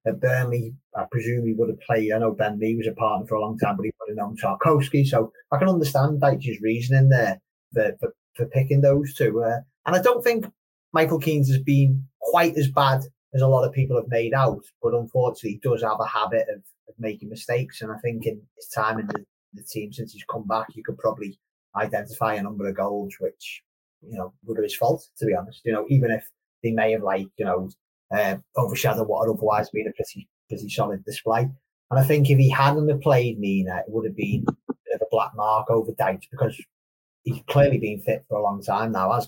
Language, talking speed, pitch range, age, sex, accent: English, 235 wpm, 110-140 Hz, 20-39, male, British